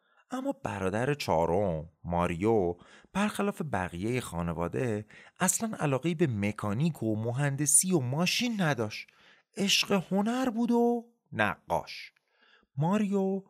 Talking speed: 100 wpm